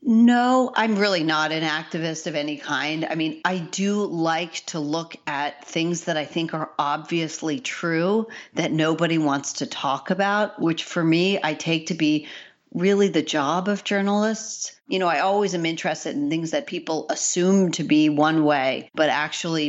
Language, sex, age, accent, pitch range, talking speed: English, female, 40-59, American, 155-210 Hz, 180 wpm